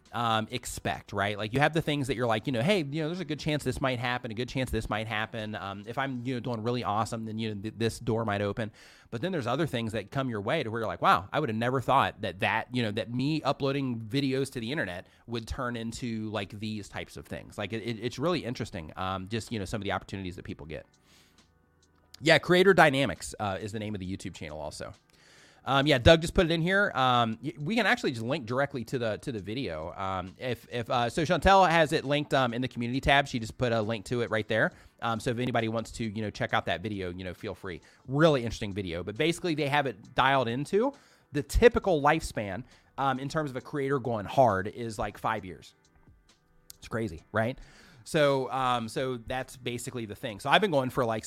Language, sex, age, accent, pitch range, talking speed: English, male, 30-49, American, 110-135 Hz, 250 wpm